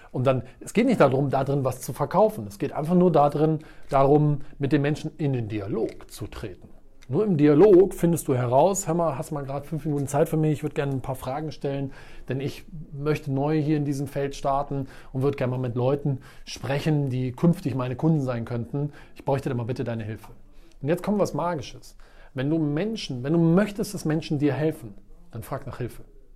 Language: German